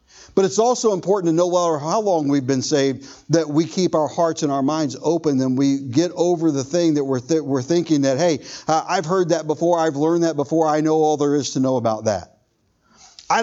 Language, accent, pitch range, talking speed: English, American, 130-175 Hz, 235 wpm